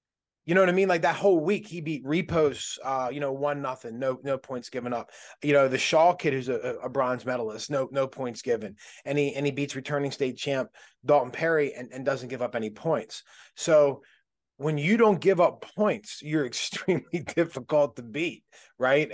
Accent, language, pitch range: American, English, 125-150 Hz